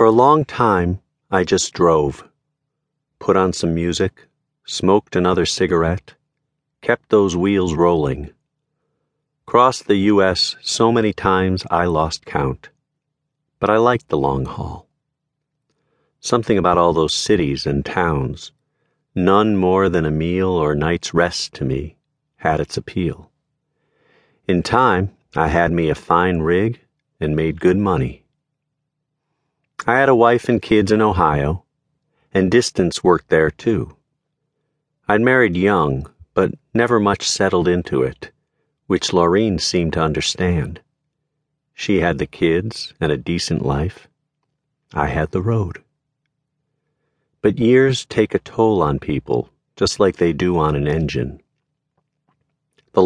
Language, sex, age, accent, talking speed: English, male, 50-69, American, 135 wpm